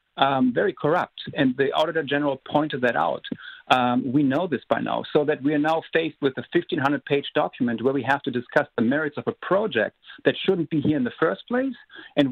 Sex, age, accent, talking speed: male, 50-69, German, 220 wpm